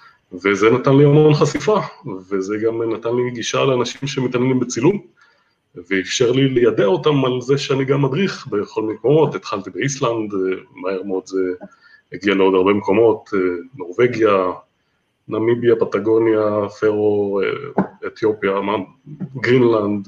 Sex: male